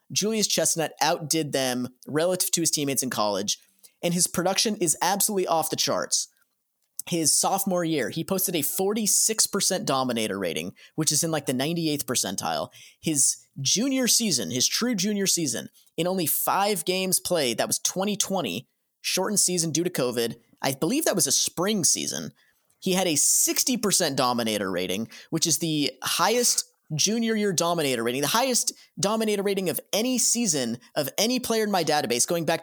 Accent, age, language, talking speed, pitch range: American, 30-49, English, 165 wpm, 150-205 Hz